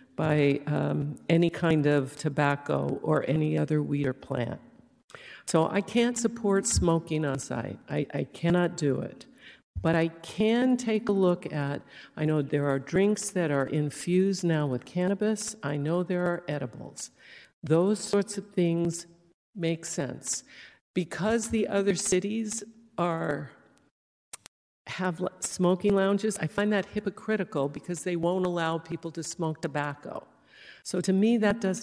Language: English